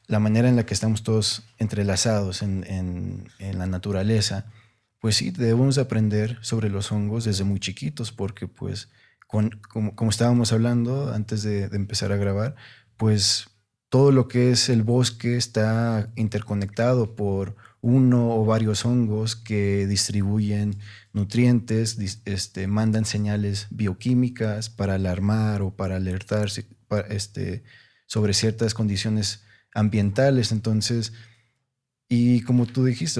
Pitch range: 105-115 Hz